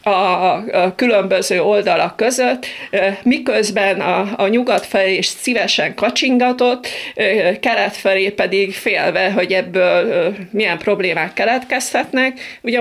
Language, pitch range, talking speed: Hungarian, 180-220 Hz, 105 wpm